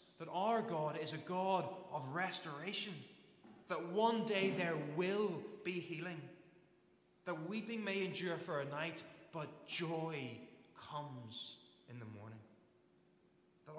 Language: English